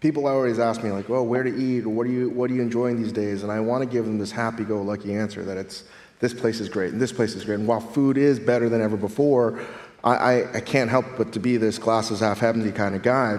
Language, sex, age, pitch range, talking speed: English, male, 30-49, 110-125 Hz, 270 wpm